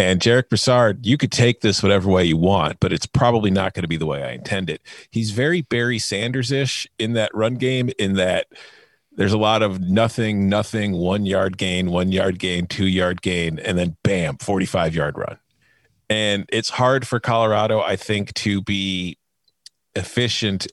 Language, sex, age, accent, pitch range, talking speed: English, male, 40-59, American, 95-120 Hz, 175 wpm